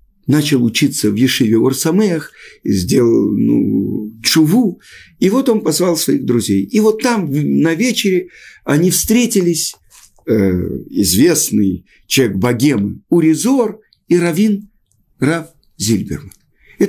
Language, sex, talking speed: Russian, male, 105 wpm